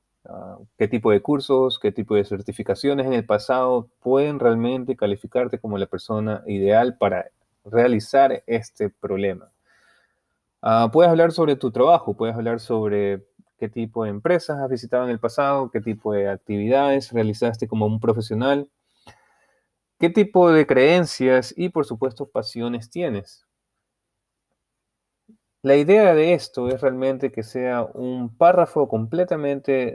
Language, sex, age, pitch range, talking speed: Spanish, male, 30-49, 110-140 Hz, 135 wpm